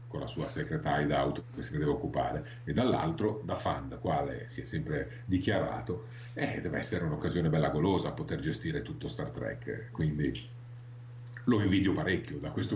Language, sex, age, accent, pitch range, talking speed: Italian, male, 50-69, native, 100-125 Hz, 175 wpm